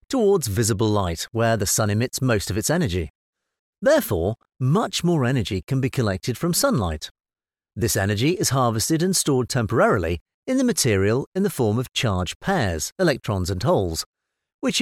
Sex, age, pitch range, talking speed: male, 40-59, 105-150 Hz, 160 wpm